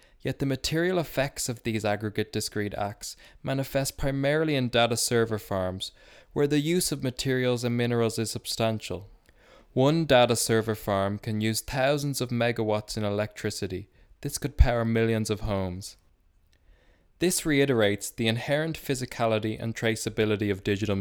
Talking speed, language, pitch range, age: 145 wpm, English, 105-125 Hz, 20-39